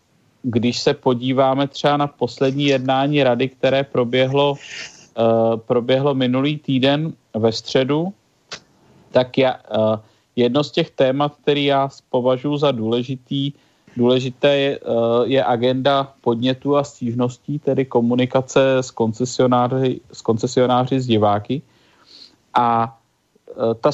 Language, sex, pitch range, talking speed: Czech, male, 125-150 Hz, 120 wpm